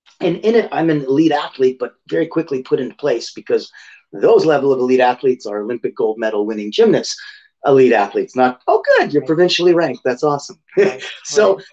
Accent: American